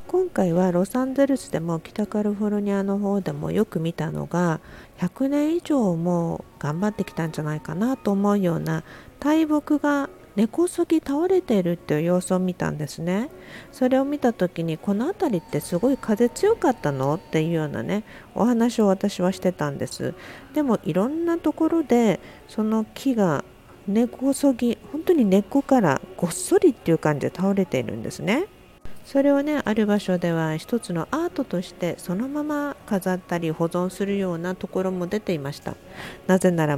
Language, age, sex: Japanese, 50-69, female